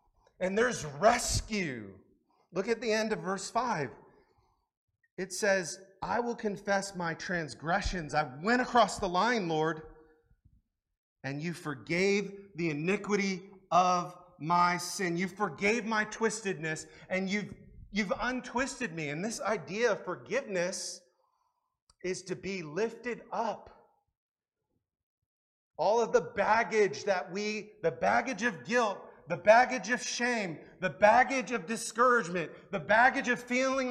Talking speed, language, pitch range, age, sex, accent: 125 wpm, English, 185-245 Hz, 30-49, male, American